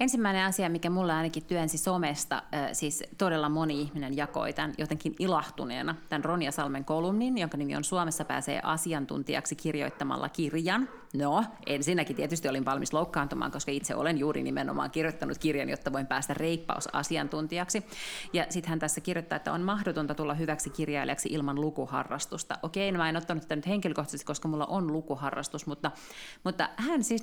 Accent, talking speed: native, 160 wpm